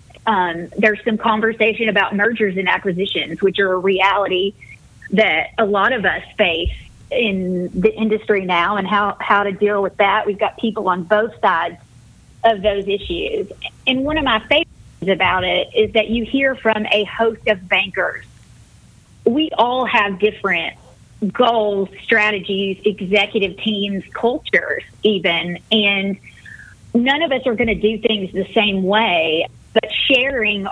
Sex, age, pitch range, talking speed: female, 30-49, 195-225 Hz, 150 wpm